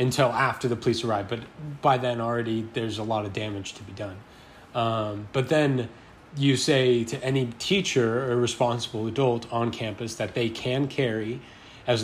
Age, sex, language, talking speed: 30-49, male, English, 175 wpm